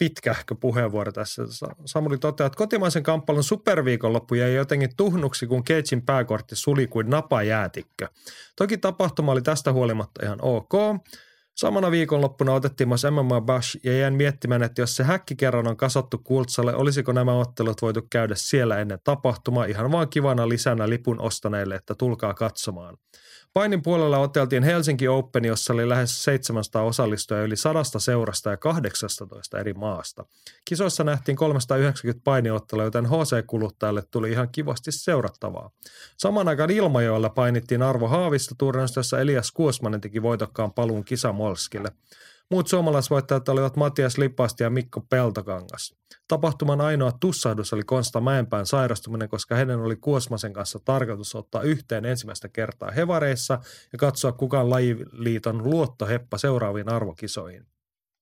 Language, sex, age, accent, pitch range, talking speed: Finnish, male, 30-49, native, 115-145 Hz, 135 wpm